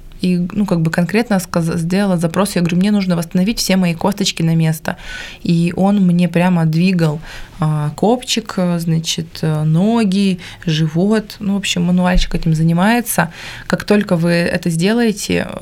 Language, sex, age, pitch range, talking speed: Russian, female, 20-39, 165-190 Hz, 145 wpm